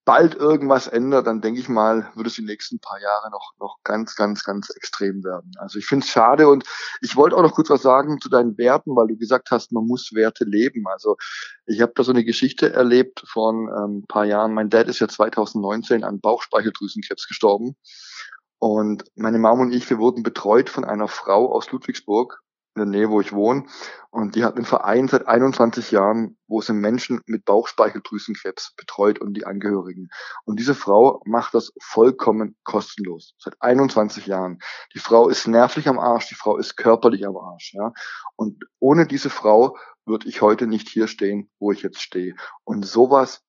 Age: 20-39